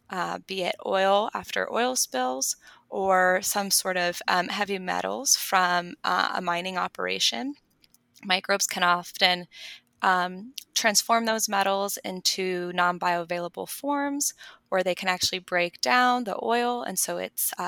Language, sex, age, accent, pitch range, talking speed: English, female, 20-39, American, 180-225 Hz, 135 wpm